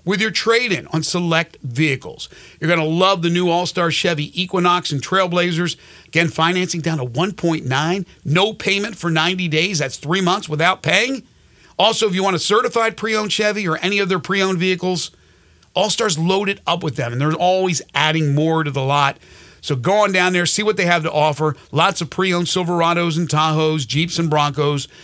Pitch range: 150-180 Hz